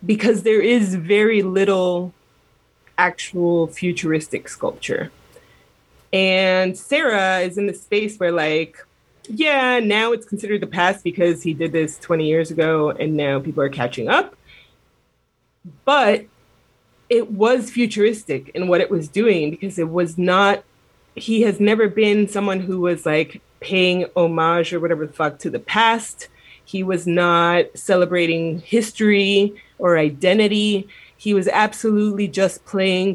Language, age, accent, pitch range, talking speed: English, 30-49, American, 165-210 Hz, 140 wpm